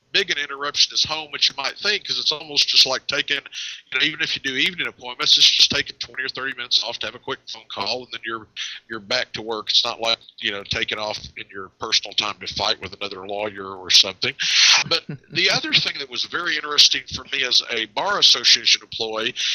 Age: 50-69